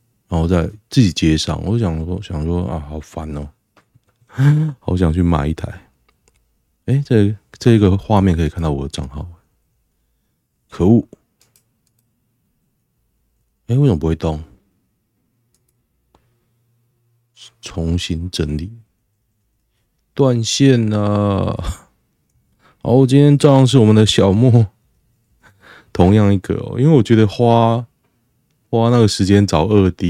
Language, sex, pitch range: Chinese, male, 85-120 Hz